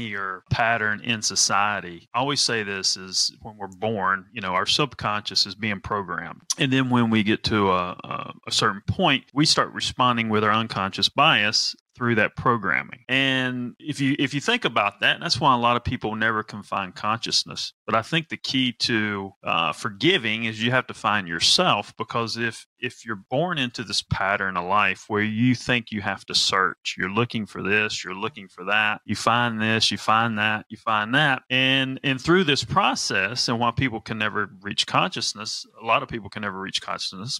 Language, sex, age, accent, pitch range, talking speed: English, male, 30-49, American, 105-125 Hz, 200 wpm